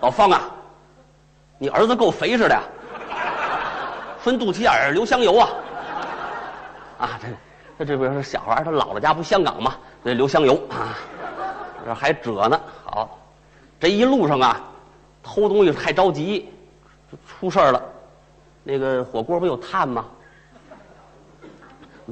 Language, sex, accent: Chinese, male, native